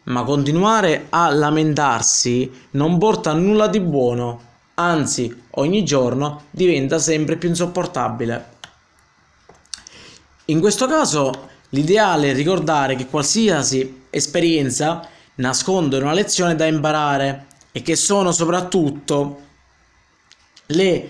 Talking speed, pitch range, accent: 100 wpm, 135-175 Hz, native